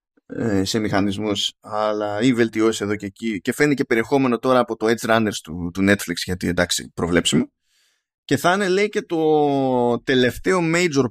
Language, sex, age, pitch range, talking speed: Greek, male, 20-39, 105-150 Hz, 160 wpm